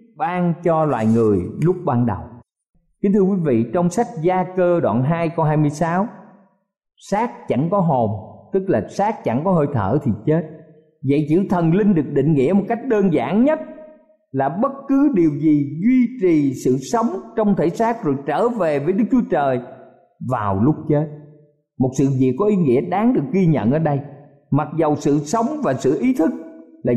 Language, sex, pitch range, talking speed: Vietnamese, male, 150-225 Hz, 195 wpm